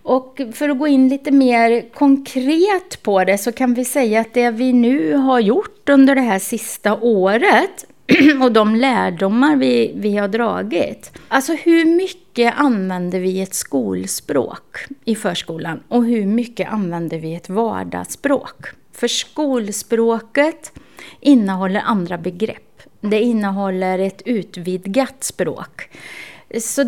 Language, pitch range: Swedish, 195-265 Hz